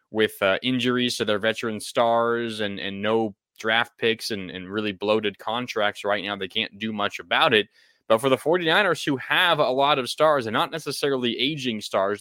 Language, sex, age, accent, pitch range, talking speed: English, male, 20-39, American, 110-135 Hz, 195 wpm